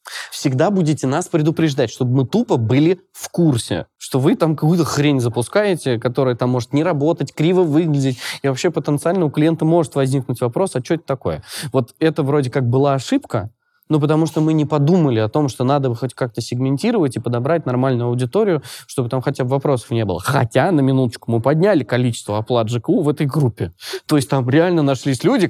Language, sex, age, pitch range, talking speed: Russian, male, 20-39, 125-160 Hz, 195 wpm